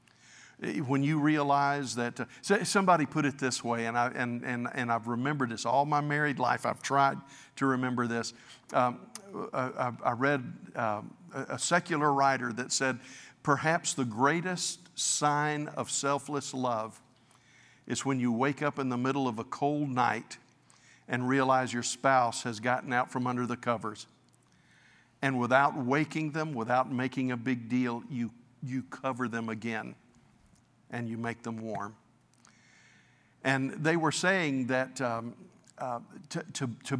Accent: American